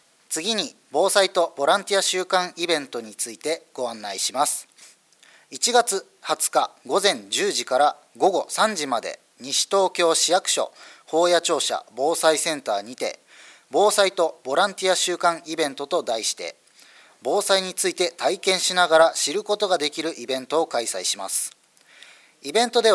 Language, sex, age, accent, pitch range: Japanese, male, 40-59, native, 150-200 Hz